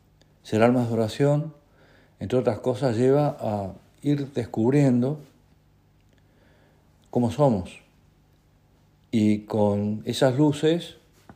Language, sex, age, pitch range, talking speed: Spanish, male, 50-69, 100-125 Hz, 90 wpm